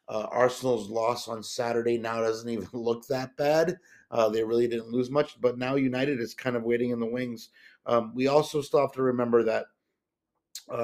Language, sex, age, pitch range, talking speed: English, male, 30-49, 120-140 Hz, 200 wpm